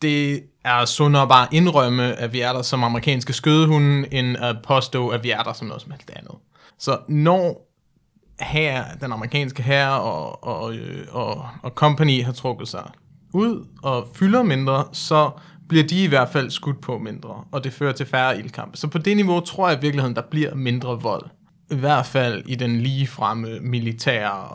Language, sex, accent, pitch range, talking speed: Danish, male, native, 125-150 Hz, 190 wpm